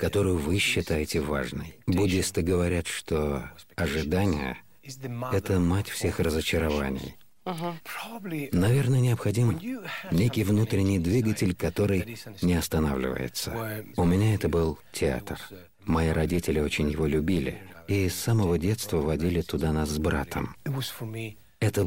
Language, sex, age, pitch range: Russian, male, 50-69, 80-105 Hz